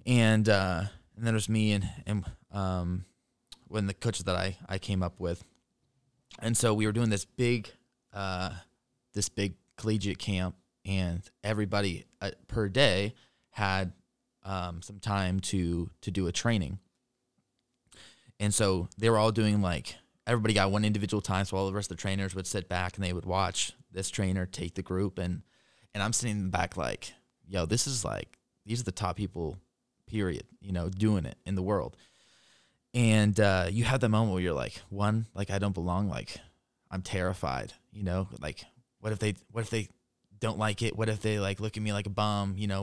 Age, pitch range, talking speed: 20-39, 95-115 Hz, 195 wpm